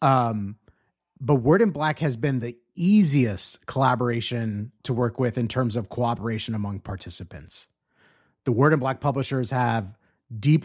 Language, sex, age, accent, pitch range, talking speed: English, male, 30-49, American, 120-145 Hz, 145 wpm